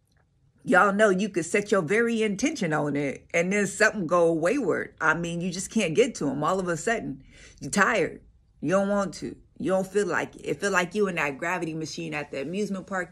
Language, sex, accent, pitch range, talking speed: English, female, American, 155-210 Hz, 230 wpm